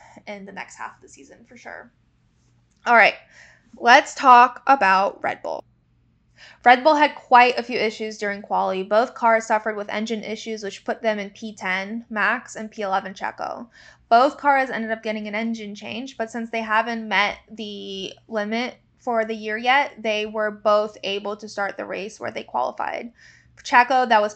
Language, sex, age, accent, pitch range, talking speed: English, female, 10-29, American, 205-235 Hz, 180 wpm